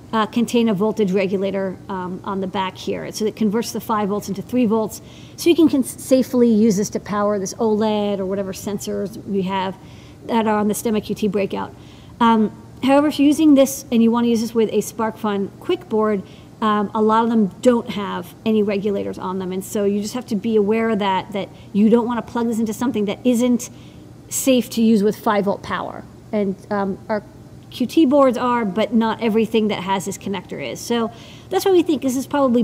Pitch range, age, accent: 200-235 Hz, 40-59, American